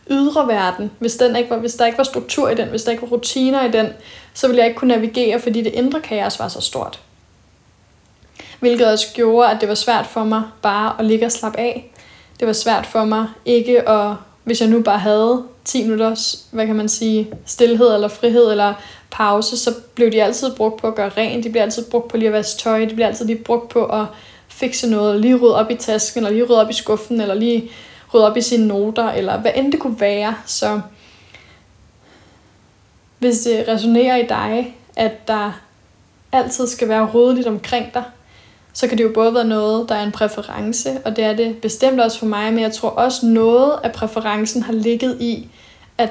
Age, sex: 10-29, female